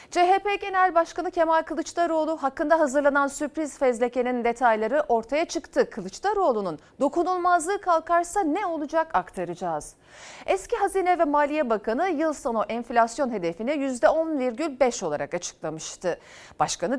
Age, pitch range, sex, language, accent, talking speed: 40-59, 220-315 Hz, female, Turkish, native, 110 wpm